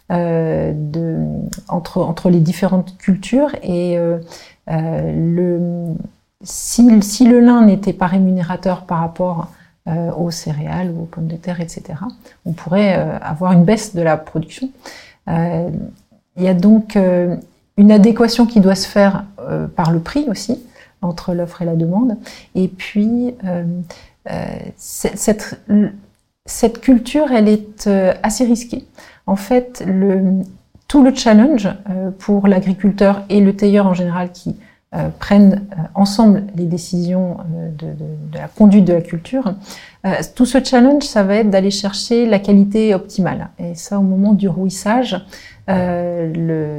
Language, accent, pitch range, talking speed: French, French, 175-210 Hz, 155 wpm